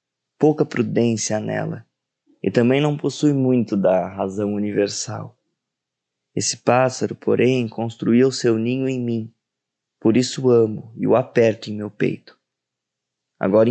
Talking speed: 130 wpm